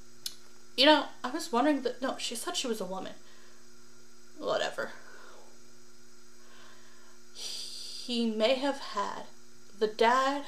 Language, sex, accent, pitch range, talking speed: English, female, American, 200-230 Hz, 115 wpm